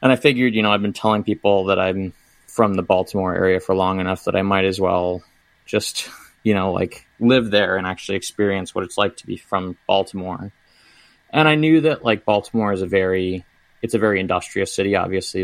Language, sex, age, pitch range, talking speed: English, male, 20-39, 95-105 Hz, 210 wpm